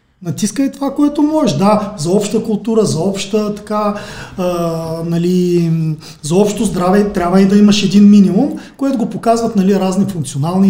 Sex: male